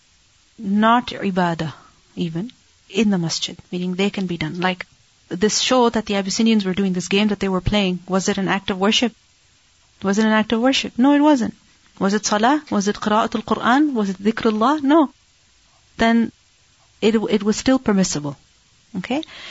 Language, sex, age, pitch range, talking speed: English, female, 40-59, 195-235 Hz, 180 wpm